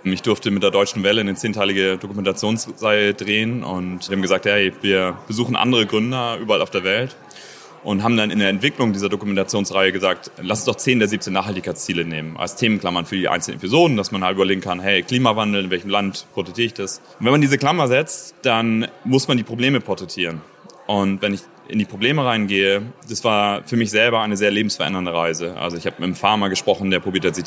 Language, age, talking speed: German, 30-49, 215 wpm